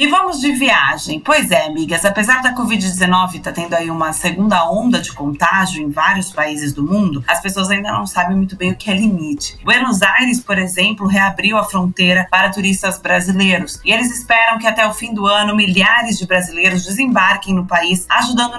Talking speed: 195 wpm